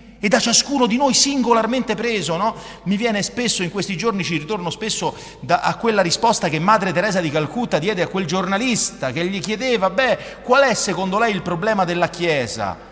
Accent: native